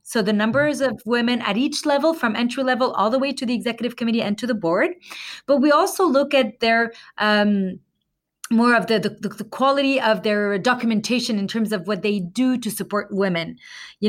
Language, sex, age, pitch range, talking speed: English, female, 30-49, 205-260 Hz, 200 wpm